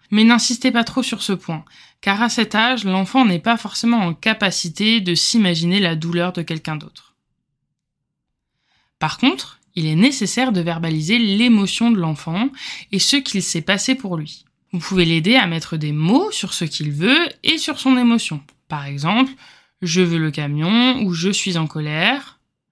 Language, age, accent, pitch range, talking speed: French, 20-39, French, 165-220 Hz, 175 wpm